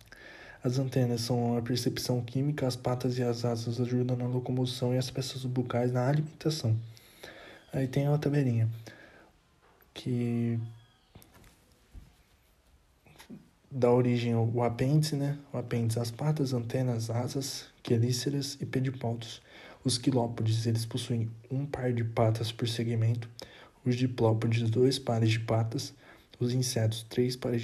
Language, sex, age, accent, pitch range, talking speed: Portuguese, male, 20-39, Brazilian, 115-135 Hz, 125 wpm